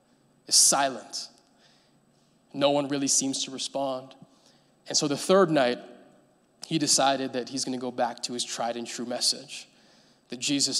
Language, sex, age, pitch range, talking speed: English, male, 20-39, 125-145 Hz, 160 wpm